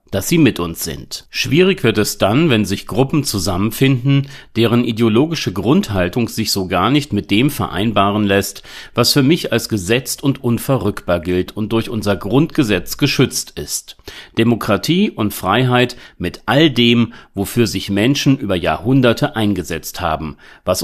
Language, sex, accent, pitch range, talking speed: German, male, German, 100-140 Hz, 150 wpm